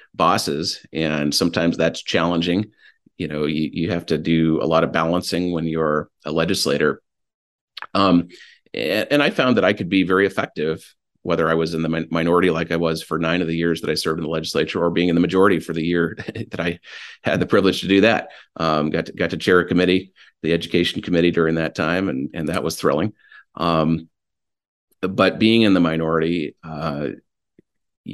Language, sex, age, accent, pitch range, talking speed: English, male, 40-59, American, 80-90 Hz, 200 wpm